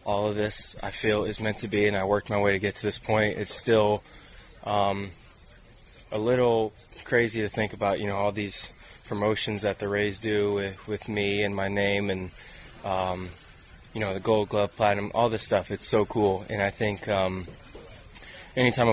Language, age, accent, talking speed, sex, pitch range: English, 20-39, American, 195 wpm, male, 100-110 Hz